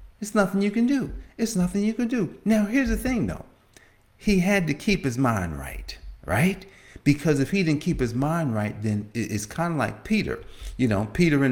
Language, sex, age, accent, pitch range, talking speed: English, male, 50-69, American, 100-155 Hz, 215 wpm